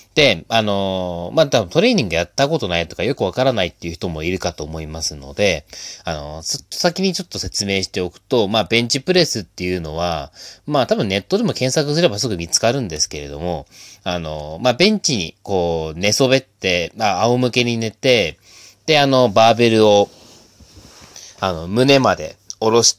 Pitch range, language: 85-125 Hz, Japanese